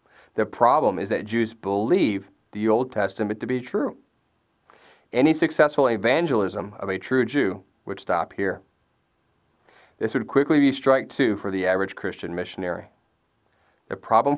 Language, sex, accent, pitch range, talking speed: English, male, American, 95-120 Hz, 145 wpm